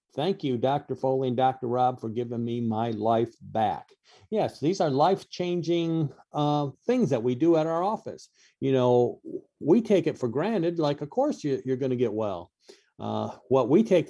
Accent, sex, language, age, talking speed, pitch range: American, male, English, 50-69, 190 wpm, 115-150 Hz